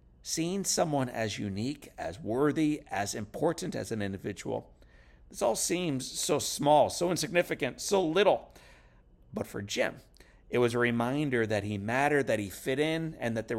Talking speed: 165 wpm